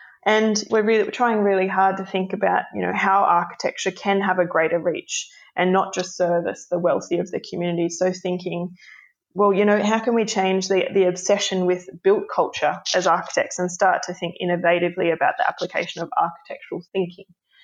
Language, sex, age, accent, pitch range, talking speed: English, female, 20-39, Australian, 180-210 Hz, 185 wpm